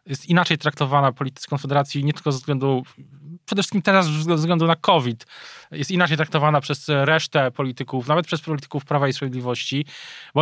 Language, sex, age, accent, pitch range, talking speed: Polish, male, 20-39, native, 125-155 Hz, 165 wpm